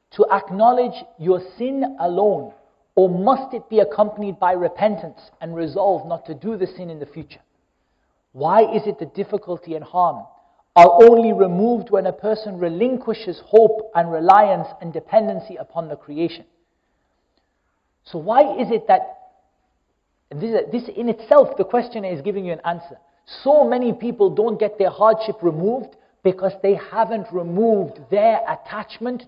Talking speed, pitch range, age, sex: 150 wpm, 175-230 Hz, 50-69, male